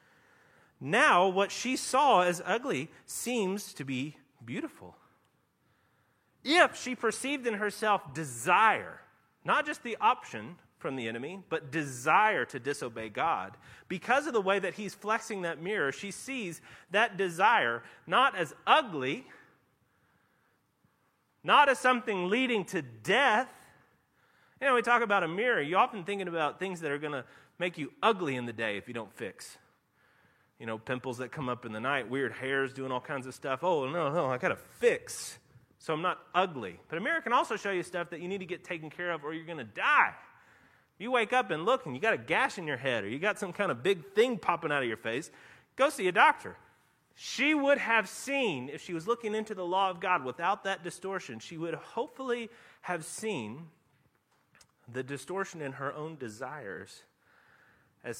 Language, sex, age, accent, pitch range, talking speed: English, male, 30-49, American, 140-225 Hz, 185 wpm